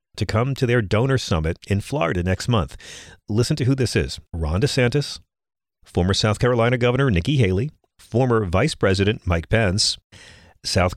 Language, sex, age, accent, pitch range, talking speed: English, male, 40-59, American, 90-130 Hz, 160 wpm